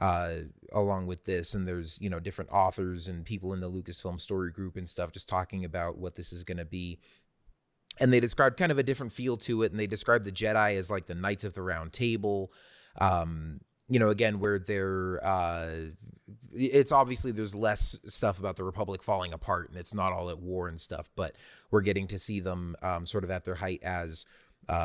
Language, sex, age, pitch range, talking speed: English, male, 30-49, 90-105 Hz, 215 wpm